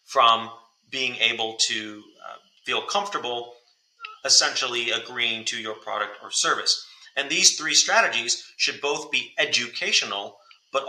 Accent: American